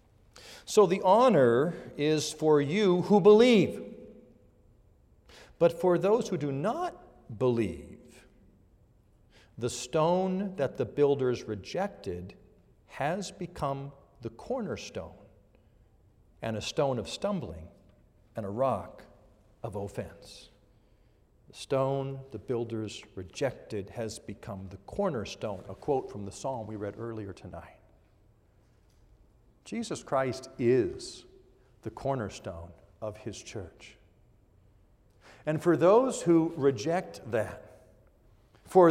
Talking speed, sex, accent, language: 105 wpm, male, American, English